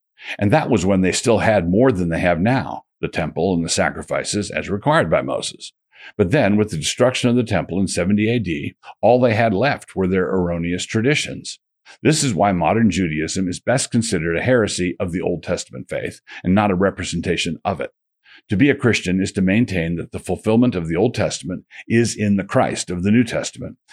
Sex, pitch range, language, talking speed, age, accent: male, 90-110 Hz, English, 210 wpm, 50-69, American